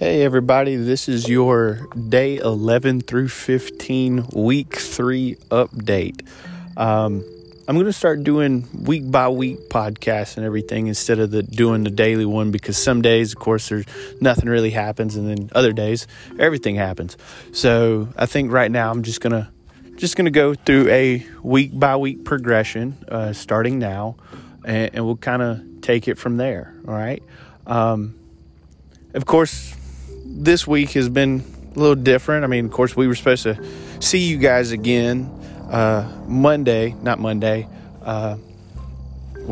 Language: English